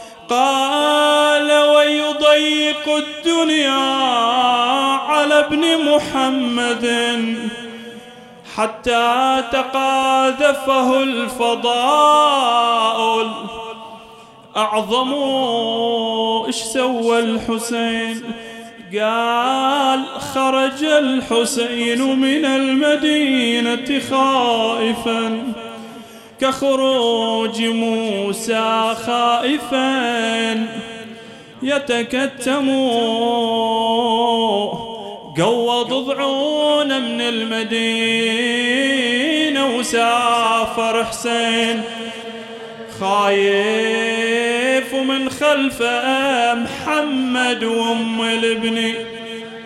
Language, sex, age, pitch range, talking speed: English, male, 30-49, 230-270 Hz, 40 wpm